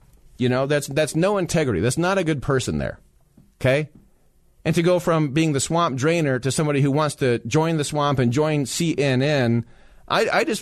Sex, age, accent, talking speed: male, 40-59, American, 200 wpm